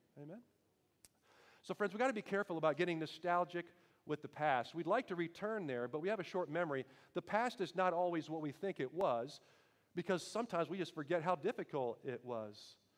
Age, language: 40-59, Dutch